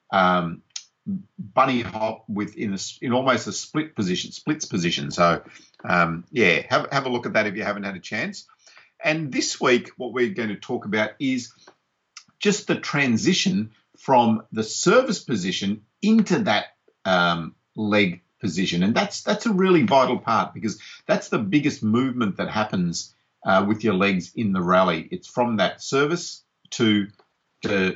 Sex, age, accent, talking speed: male, 50-69, Australian, 165 wpm